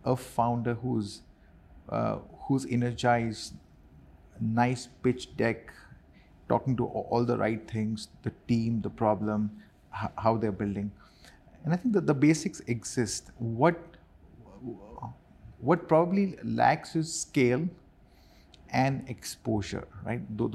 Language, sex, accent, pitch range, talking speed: Russian, male, Indian, 110-140 Hz, 115 wpm